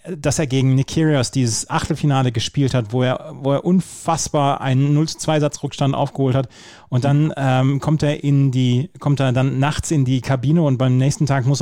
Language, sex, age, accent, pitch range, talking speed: German, male, 30-49, German, 125-150 Hz, 190 wpm